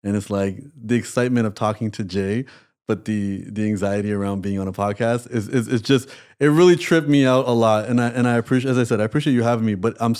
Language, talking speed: English, 260 wpm